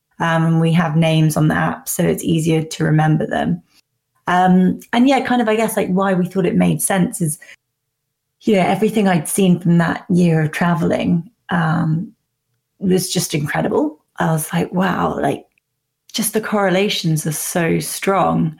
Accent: British